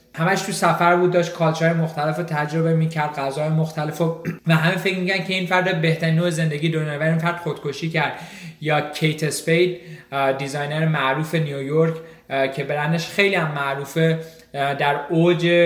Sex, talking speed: male, 150 wpm